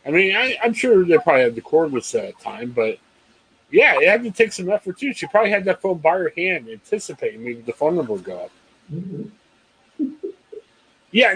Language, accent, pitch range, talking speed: English, American, 160-240 Hz, 205 wpm